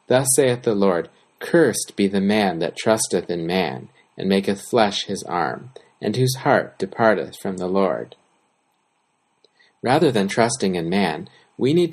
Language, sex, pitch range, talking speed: English, male, 100-130 Hz, 155 wpm